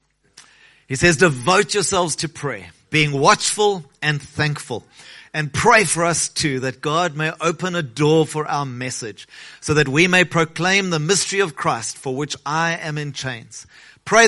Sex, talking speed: male, 170 wpm